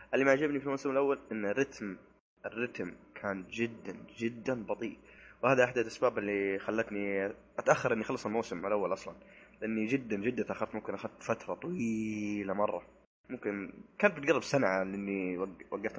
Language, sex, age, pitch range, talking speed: Arabic, male, 20-39, 100-120 Hz, 145 wpm